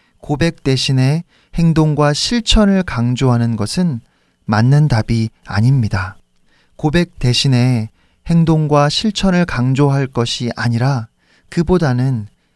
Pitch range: 115-155 Hz